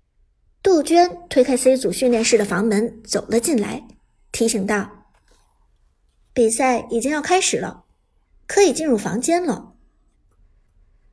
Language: Chinese